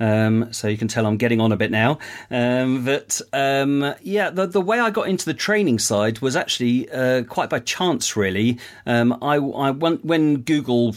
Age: 40-59